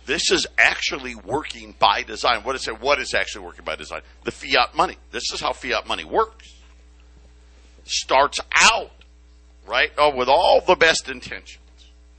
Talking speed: 160 wpm